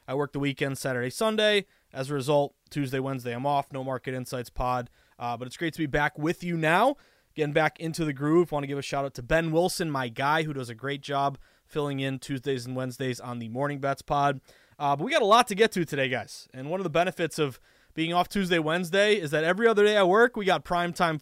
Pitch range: 130-175 Hz